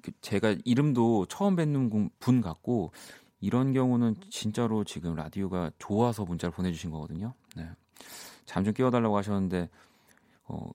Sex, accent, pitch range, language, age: male, native, 90-135 Hz, Korean, 40-59